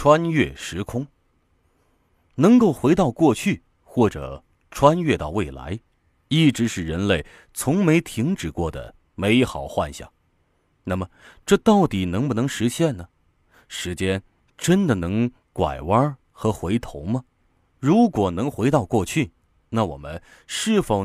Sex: male